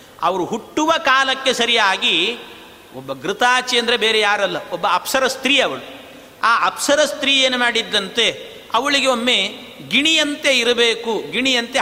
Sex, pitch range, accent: male, 220-270 Hz, native